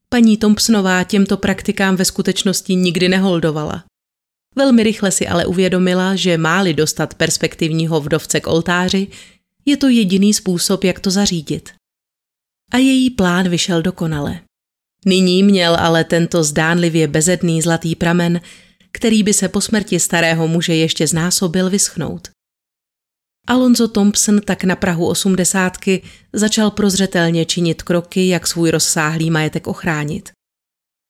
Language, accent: Czech, native